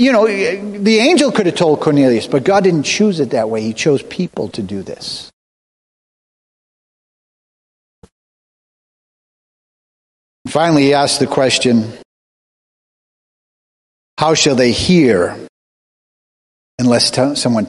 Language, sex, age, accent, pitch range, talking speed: English, male, 40-59, American, 115-170 Hz, 110 wpm